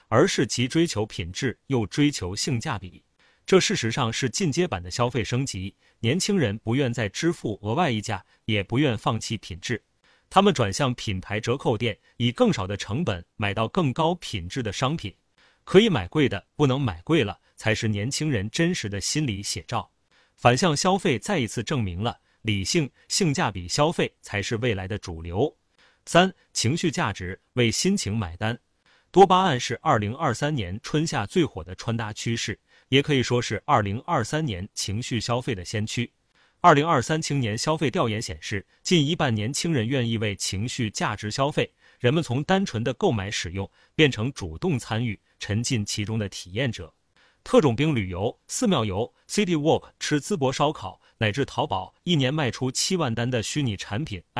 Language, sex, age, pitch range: Chinese, male, 30-49, 105-150 Hz